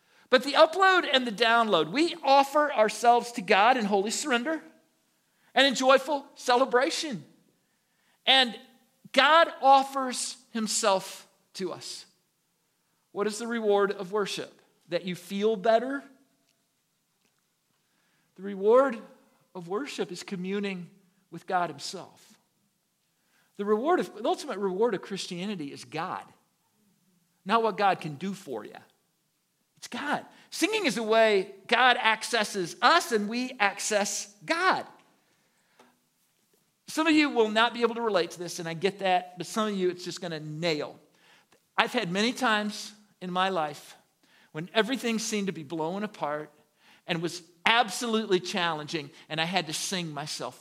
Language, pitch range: English, 180-245 Hz